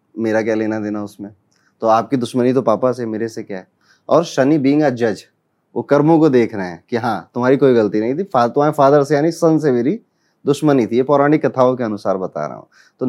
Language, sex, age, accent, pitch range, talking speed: Hindi, male, 20-39, native, 110-135 Hz, 225 wpm